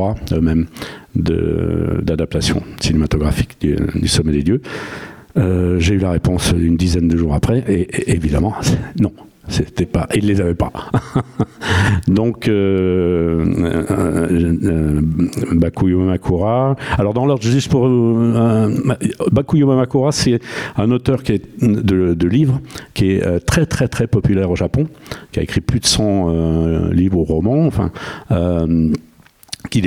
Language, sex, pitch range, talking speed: French, male, 85-115 Hz, 145 wpm